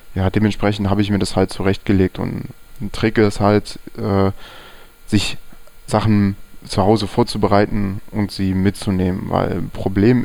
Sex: male